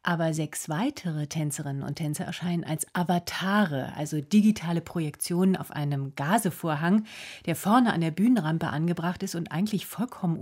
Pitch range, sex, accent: 155-190 Hz, female, German